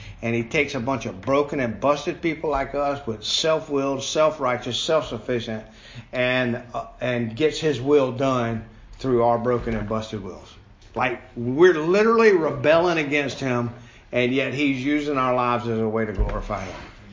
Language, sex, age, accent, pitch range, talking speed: English, male, 50-69, American, 115-145 Hz, 165 wpm